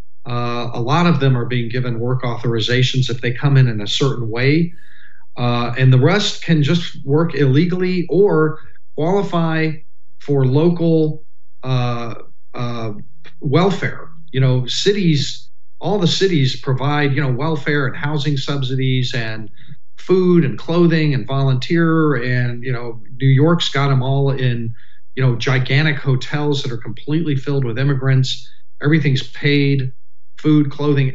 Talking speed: 145 wpm